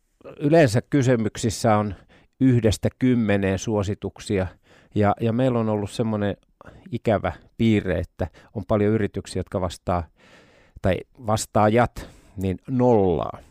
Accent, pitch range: native, 100-125 Hz